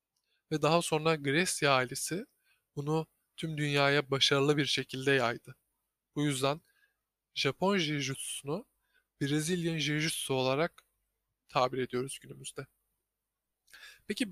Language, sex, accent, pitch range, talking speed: Turkish, male, native, 140-180 Hz, 95 wpm